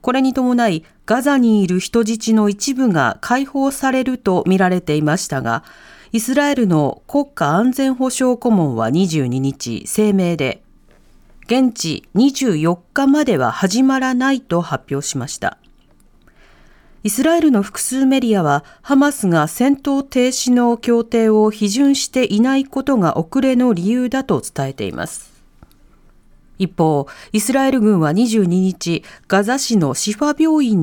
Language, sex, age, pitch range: Japanese, female, 40-59, 175-260 Hz